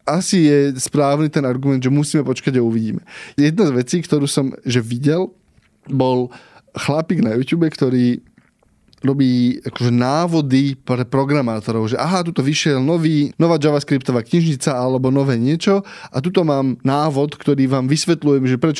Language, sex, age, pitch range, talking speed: Slovak, male, 20-39, 130-155 Hz, 155 wpm